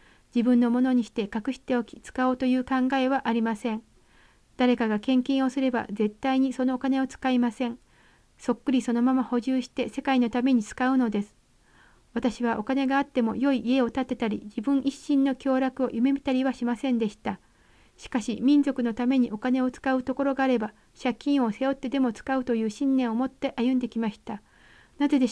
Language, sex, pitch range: Japanese, female, 235-265 Hz